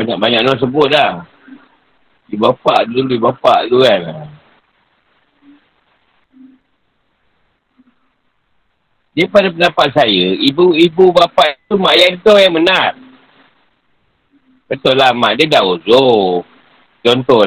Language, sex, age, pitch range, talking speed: Malay, male, 50-69, 140-210 Hz, 105 wpm